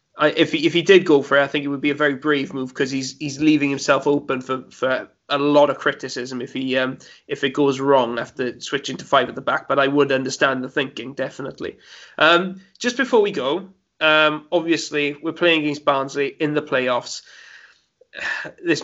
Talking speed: 210 wpm